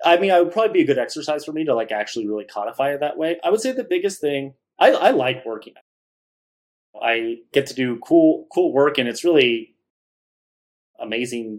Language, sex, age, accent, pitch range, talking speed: English, male, 30-49, American, 120-165 Hz, 205 wpm